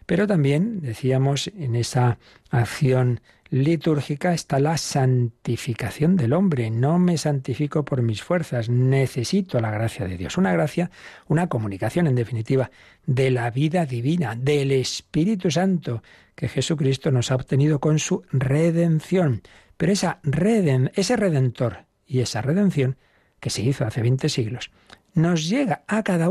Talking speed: 135 wpm